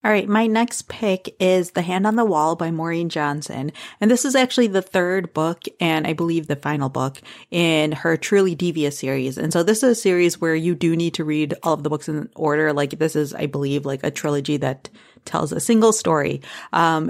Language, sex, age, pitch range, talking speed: English, female, 30-49, 150-190 Hz, 225 wpm